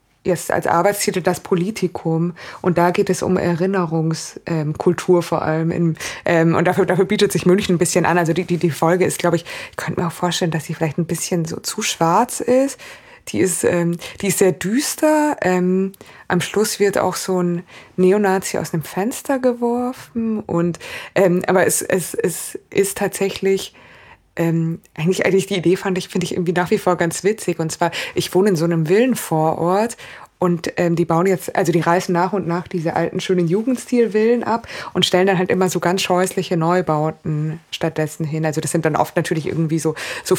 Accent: German